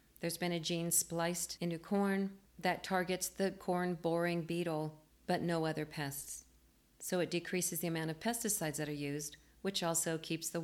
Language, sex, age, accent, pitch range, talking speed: English, female, 40-59, American, 155-185 Hz, 175 wpm